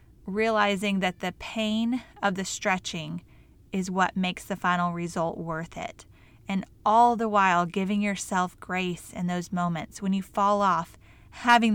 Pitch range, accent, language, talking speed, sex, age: 180-220 Hz, American, English, 155 wpm, female, 20-39